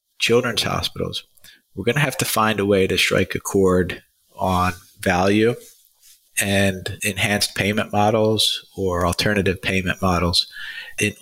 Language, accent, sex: English, American, male